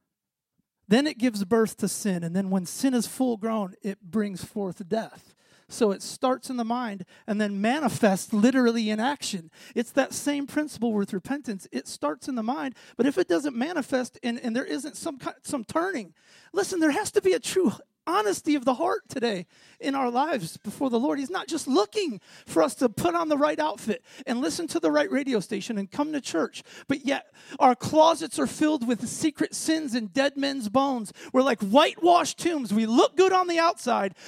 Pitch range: 225-320 Hz